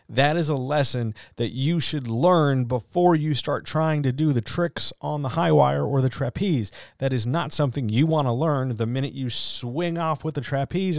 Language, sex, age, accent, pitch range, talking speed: English, male, 40-59, American, 100-130 Hz, 215 wpm